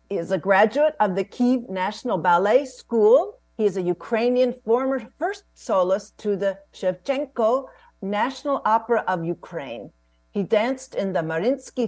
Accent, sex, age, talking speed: American, female, 50-69, 145 wpm